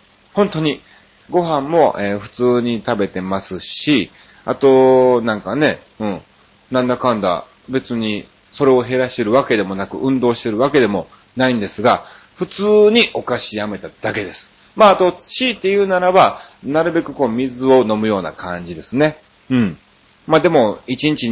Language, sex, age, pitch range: Japanese, male, 30-49, 110-155 Hz